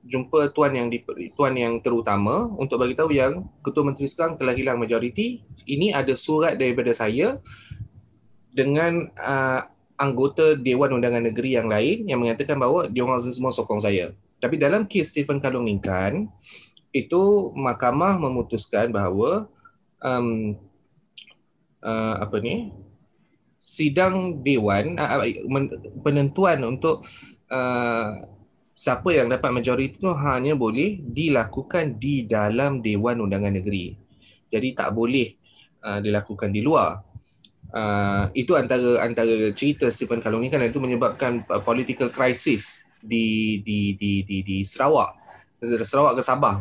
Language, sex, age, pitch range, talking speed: Malay, male, 20-39, 110-140 Hz, 130 wpm